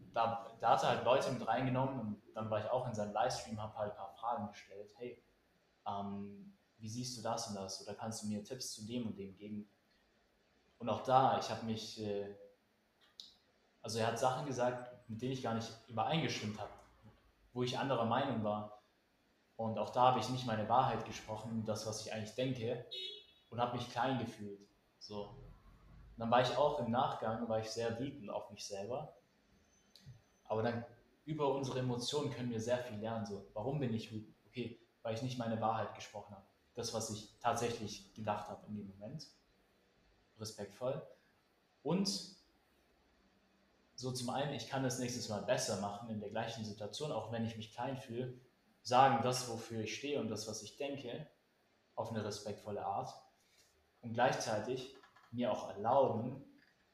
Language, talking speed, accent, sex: German, 180 wpm, German, male